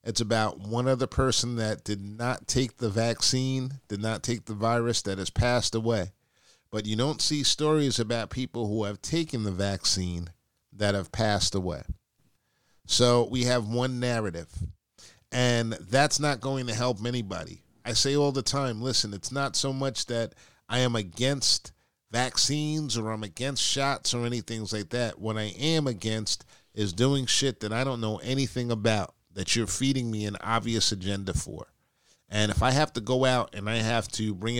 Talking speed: 180 wpm